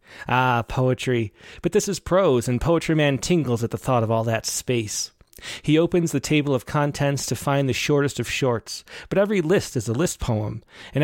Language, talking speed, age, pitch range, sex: English, 200 wpm, 30-49, 120-155 Hz, male